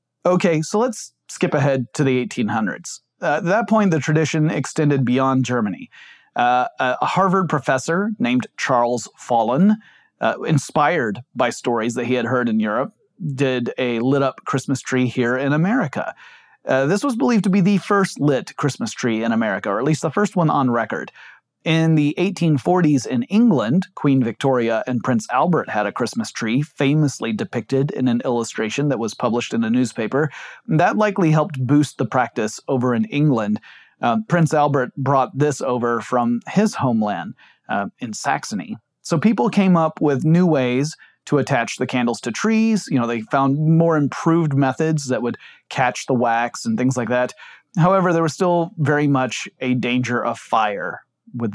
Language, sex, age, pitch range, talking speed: English, male, 30-49, 125-165 Hz, 175 wpm